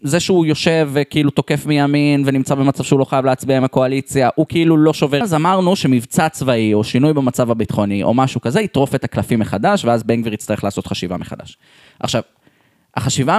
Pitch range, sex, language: 120-170 Hz, male, Hebrew